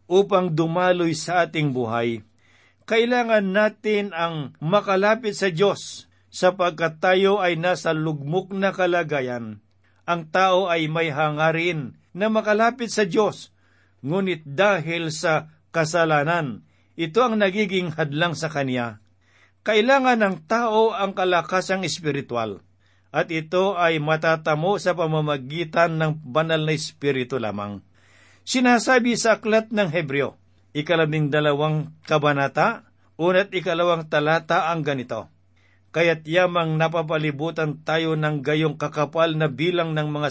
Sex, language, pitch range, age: male, Filipino, 145-185 Hz, 50-69